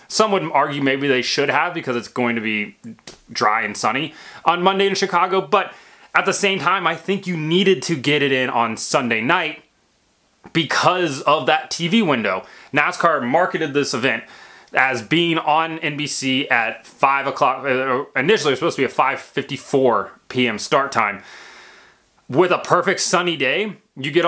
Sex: male